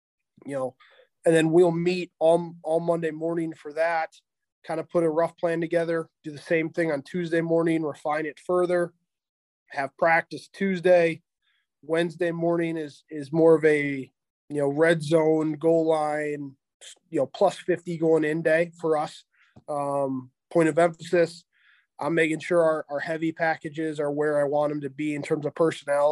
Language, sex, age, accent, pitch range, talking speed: English, male, 20-39, American, 140-165 Hz, 175 wpm